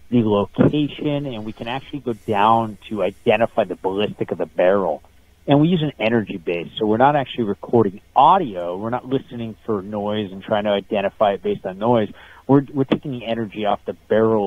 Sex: male